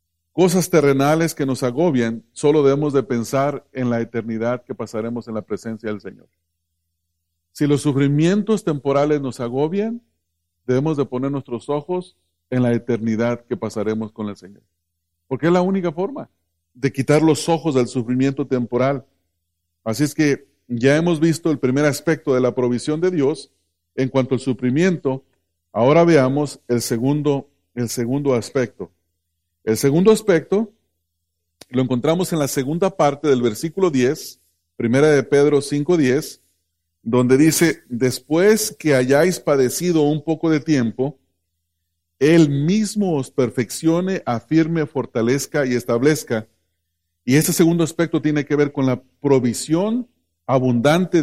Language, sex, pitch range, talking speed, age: English, male, 110-150 Hz, 140 wpm, 40-59